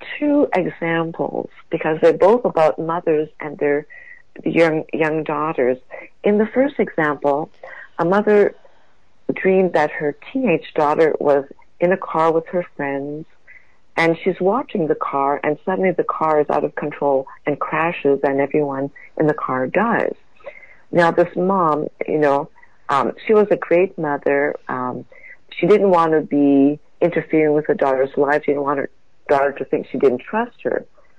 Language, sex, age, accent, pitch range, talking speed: English, female, 50-69, American, 140-185 Hz, 160 wpm